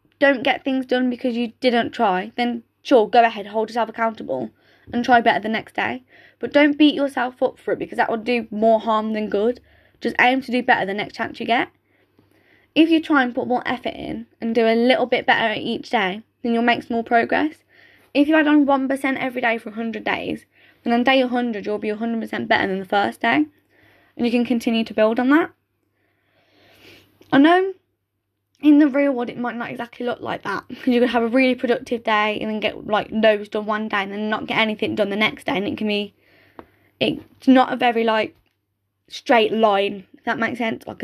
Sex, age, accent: female, 10-29, British